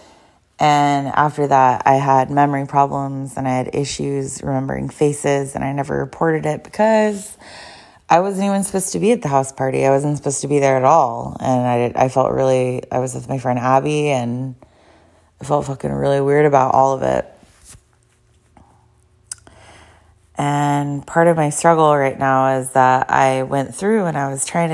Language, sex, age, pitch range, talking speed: English, female, 20-39, 135-160 Hz, 180 wpm